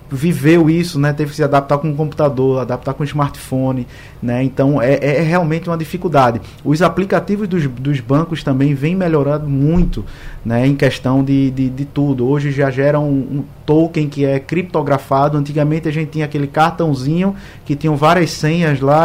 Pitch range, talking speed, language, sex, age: 135-160 Hz, 180 wpm, Portuguese, male, 20-39